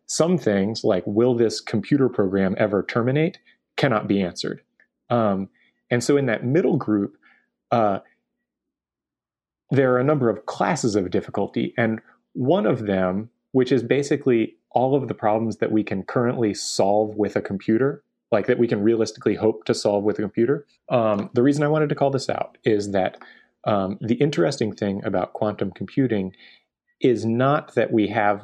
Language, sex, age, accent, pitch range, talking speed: English, male, 30-49, American, 105-130 Hz, 170 wpm